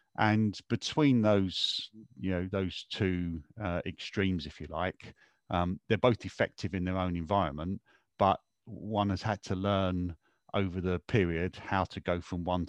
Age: 50-69